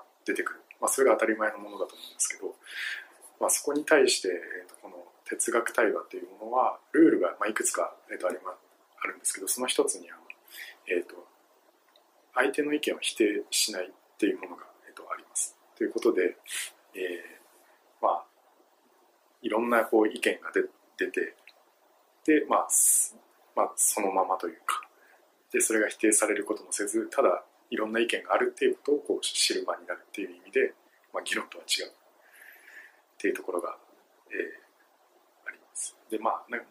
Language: English